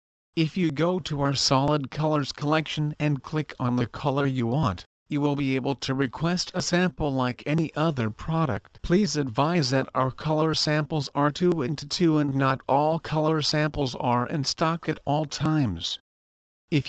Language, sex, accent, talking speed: English, male, American, 175 wpm